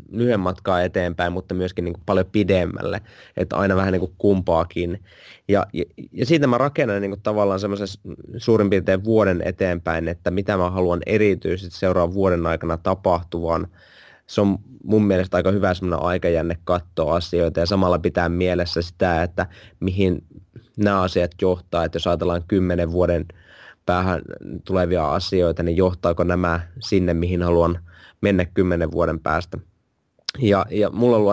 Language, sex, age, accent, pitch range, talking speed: Finnish, male, 20-39, native, 85-95 Hz, 150 wpm